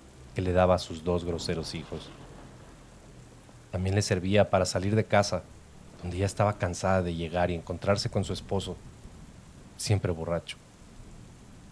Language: Spanish